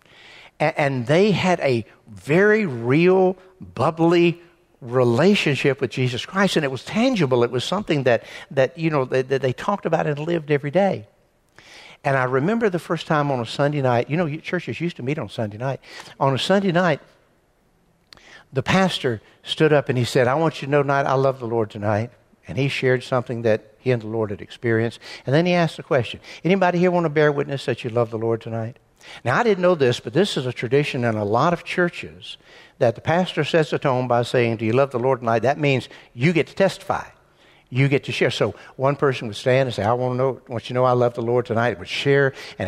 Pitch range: 120-165 Hz